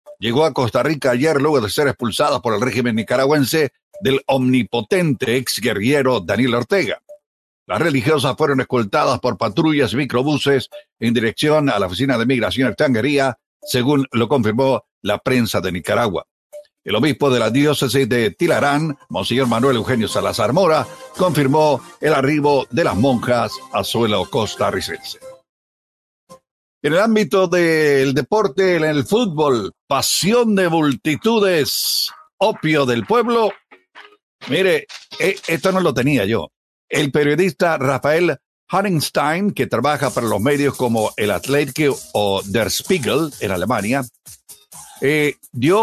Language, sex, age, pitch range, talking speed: Spanish, male, 60-79, 125-170 Hz, 135 wpm